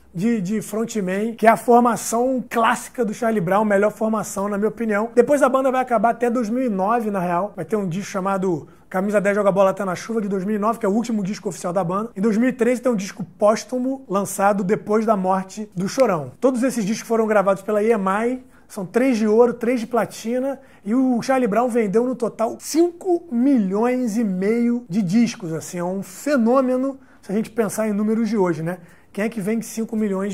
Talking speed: 210 wpm